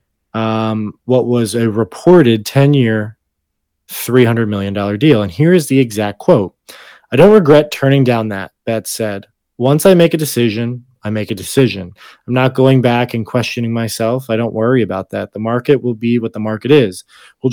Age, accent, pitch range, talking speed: 20-39, American, 110-130 Hz, 185 wpm